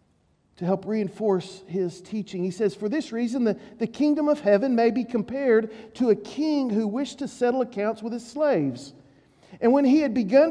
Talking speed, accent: 195 wpm, American